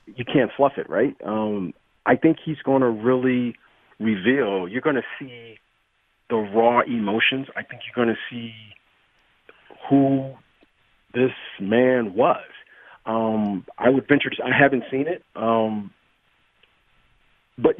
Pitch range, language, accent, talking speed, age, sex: 115-145 Hz, English, American, 140 wpm, 40-59, male